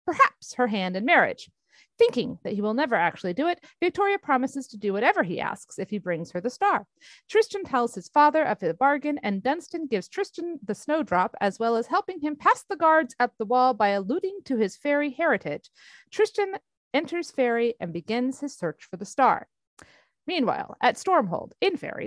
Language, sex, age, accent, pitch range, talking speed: English, female, 40-59, American, 215-340 Hz, 195 wpm